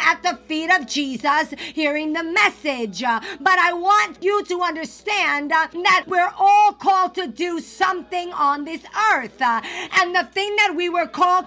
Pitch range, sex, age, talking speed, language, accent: 290-370 Hz, female, 50-69, 160 wpm, English, American